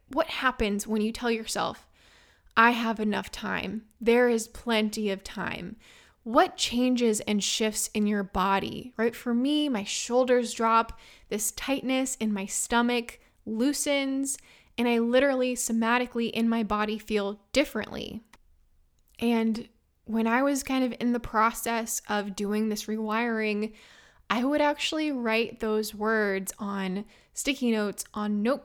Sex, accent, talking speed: female, American, 140 wpm